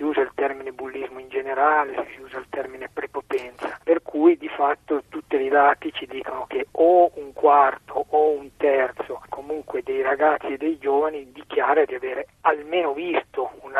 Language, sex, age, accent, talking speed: Italian, male, 40-59, native, 170 wpm